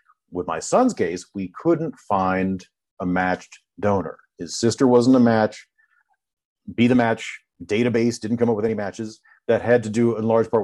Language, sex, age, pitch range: English, male, 40-59, 95-115 Hz